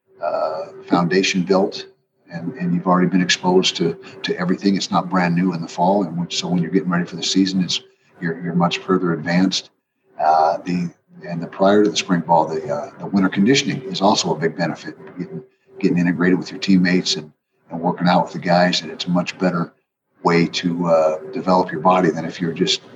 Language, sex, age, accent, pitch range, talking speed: English, male, 50-69, American, 90-105 Hz, 210 wpm